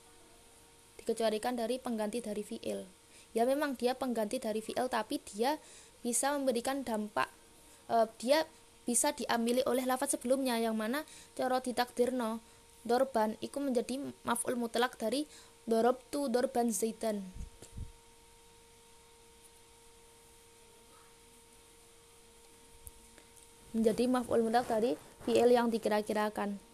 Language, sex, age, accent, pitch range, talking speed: Indonesian, female, 20-39, native, 190-250 Hz, 90 wpm